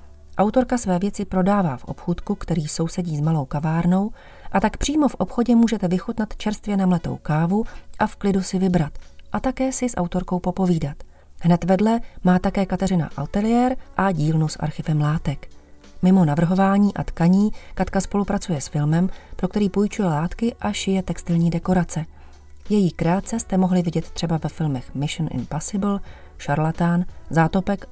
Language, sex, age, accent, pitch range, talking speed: Czech, female, 30-49, native, 160-200 Hz, 155 wpm